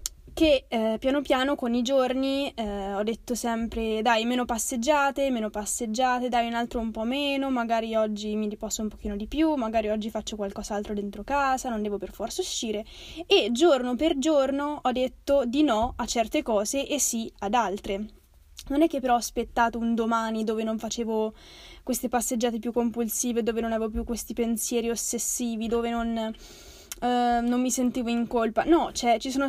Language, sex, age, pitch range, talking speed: Italian, female, 10-29, 225-280 Hz, 180 wpm